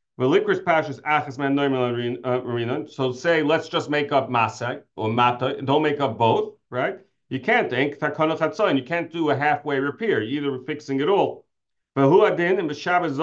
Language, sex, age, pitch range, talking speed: English, male, 40-59, 125-160 Hz, 135 wpm